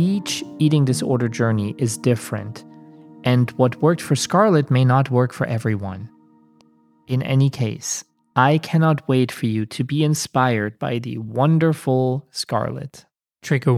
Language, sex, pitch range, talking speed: English, male, 120-155 Hz, 140 wpm